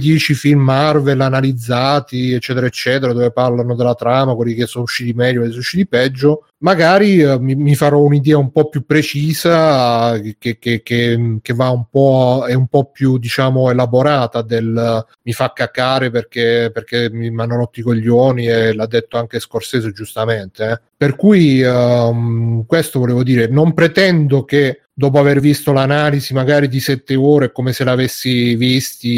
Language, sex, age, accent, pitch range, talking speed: Italian, male, 30-49, native, 120-140 Hz, 175 wpm